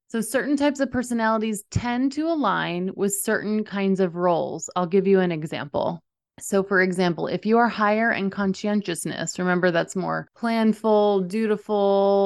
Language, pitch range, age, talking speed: English, 175-215 Hz, 30-49, 155 wpm